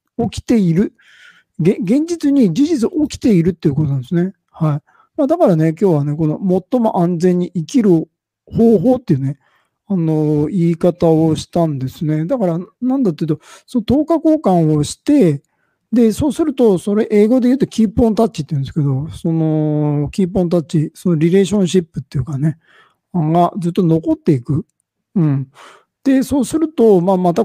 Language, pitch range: Japanese, 155-240 Hz